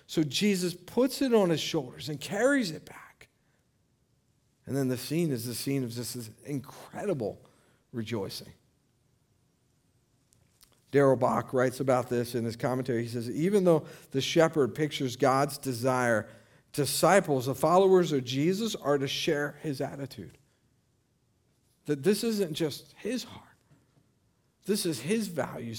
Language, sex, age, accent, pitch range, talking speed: English, male, 50-69, American, 125-165 Hz, 140 wpm